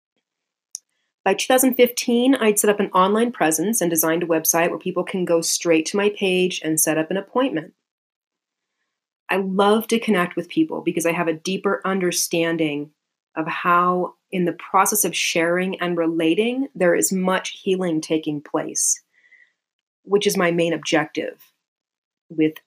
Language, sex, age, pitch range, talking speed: English, female, 30-49, 165-205 Hz, 155 wpm